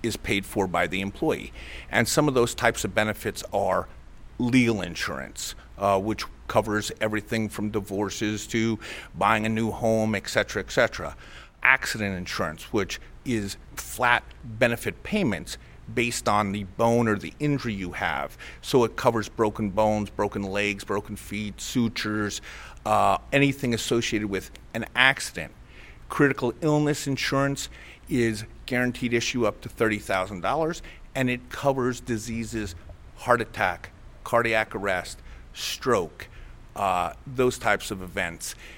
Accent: American